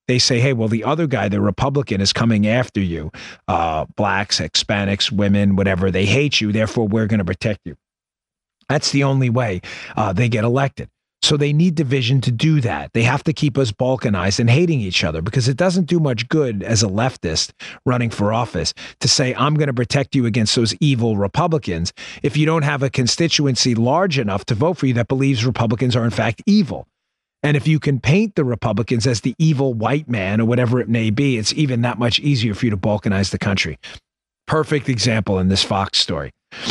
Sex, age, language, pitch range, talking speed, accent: male, 40-59, English, 105-140 Hz, 210 wpm, American